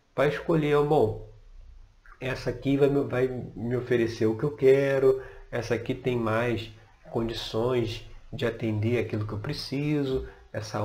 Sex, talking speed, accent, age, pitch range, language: male, 145 wpm, Brazilian, 40-59, 110-140 Hz, Portuguese